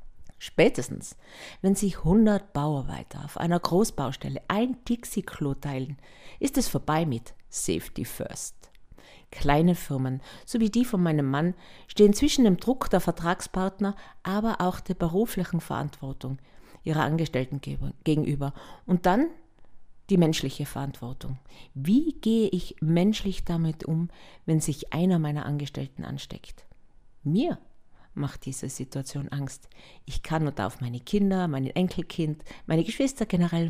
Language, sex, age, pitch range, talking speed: German, female, 50-69, 140-190 Hz, 130 wpm